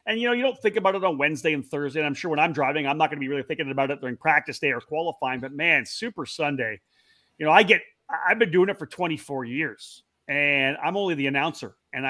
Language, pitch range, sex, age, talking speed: English, 140-180 Hz, male, 30-49, 270 wpm